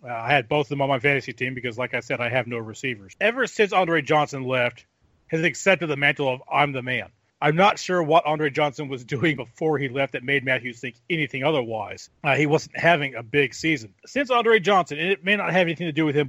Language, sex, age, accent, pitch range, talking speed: English, male, 40-59, American, 130-170 Hz, 245 wpm